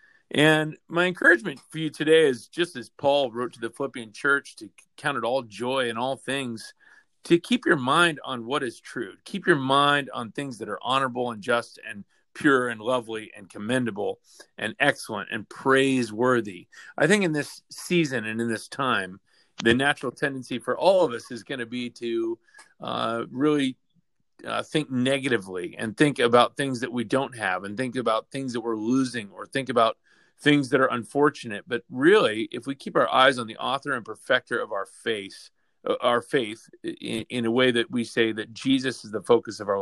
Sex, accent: male, American